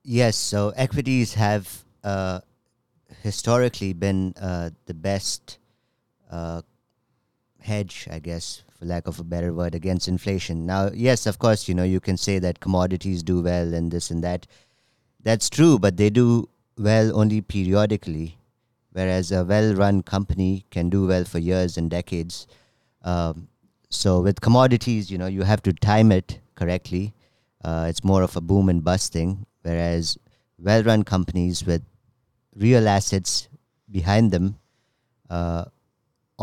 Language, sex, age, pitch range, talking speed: English, male, 50-69, 90-115 Hz, 145 wpm